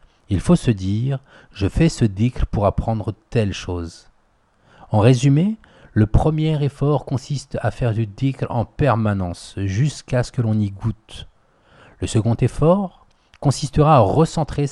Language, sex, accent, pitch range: French, male, French, 100-130 Hz